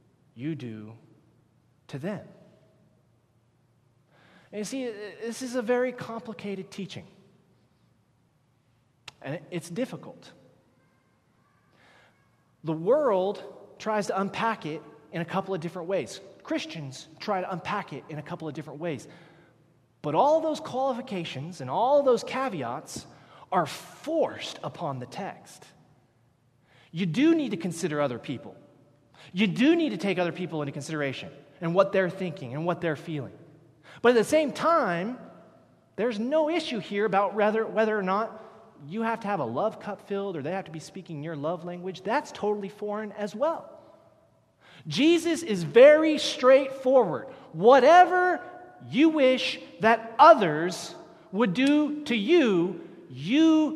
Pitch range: 155-240 Hz